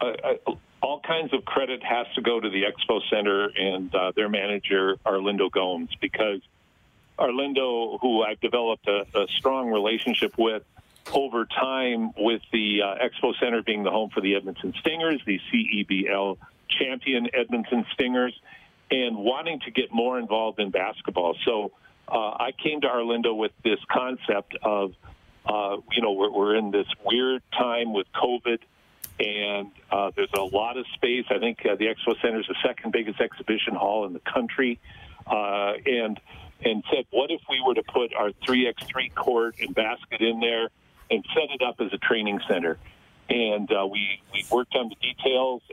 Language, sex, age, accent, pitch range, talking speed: English, male, 50-69, American, 105-130 Hz, 170 wpm